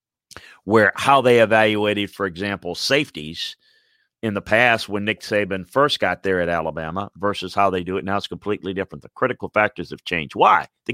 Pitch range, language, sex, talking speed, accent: 95-115 Hz, English, male, 185 wpm, American